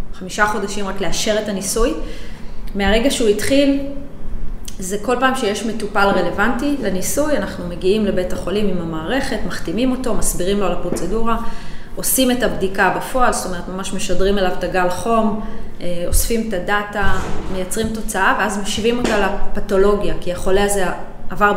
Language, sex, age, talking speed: Hebrew, female, 20-39, 145 wpm